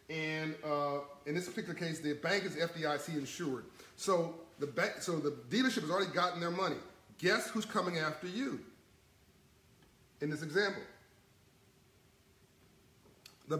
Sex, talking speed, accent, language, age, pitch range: male, 130 wpm, American, English, 40-59, 145-185 Hz